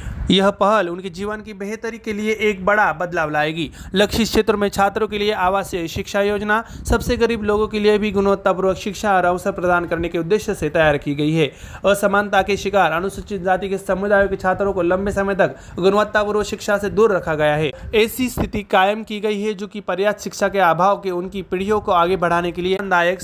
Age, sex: 30-49, male